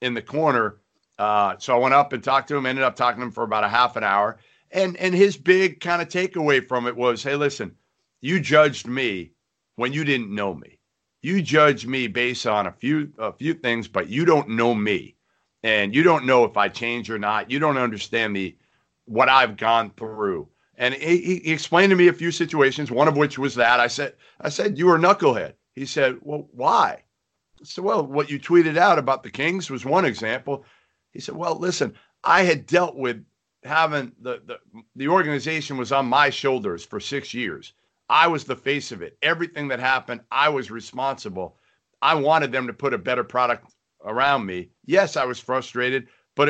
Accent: American